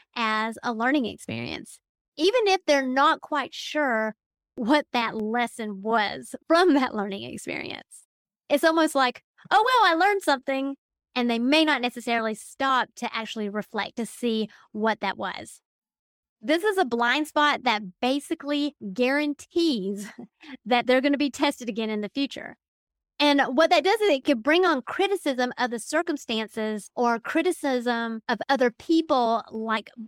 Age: 30-49